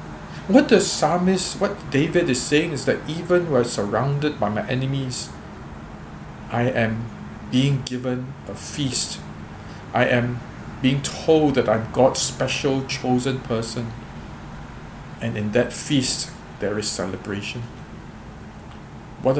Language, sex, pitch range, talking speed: English, male, 115-140 Hz, 125 wpm